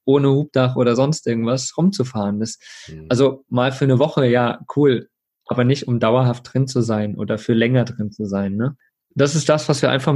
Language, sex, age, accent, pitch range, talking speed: German, male, 20-39, German, 120-140 Hz, 200 wpm